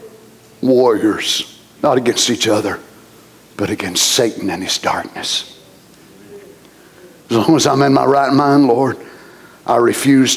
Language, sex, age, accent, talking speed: English, male, 60-79, American, 125 wpm